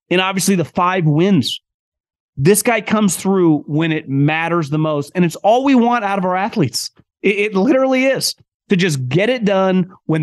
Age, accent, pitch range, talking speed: 30-49, American, 155-190 Hz, 195 wpm